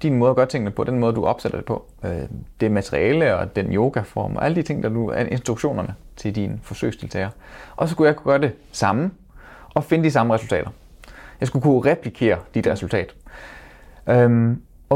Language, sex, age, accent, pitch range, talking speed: Danish, male, 30-49, native, 105-135 Hz, 180 wpm